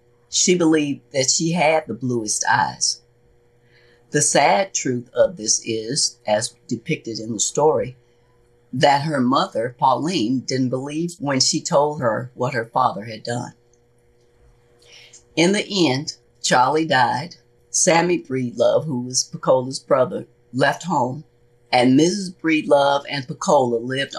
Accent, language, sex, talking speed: American, English, female, 130 wpm